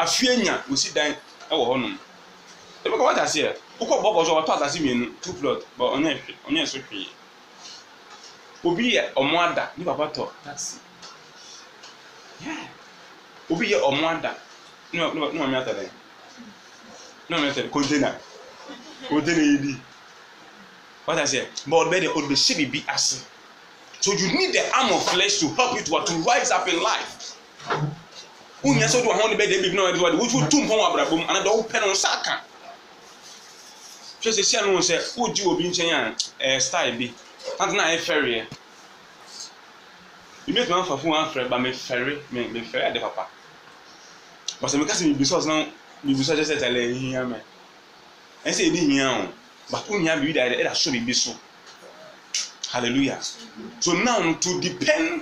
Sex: male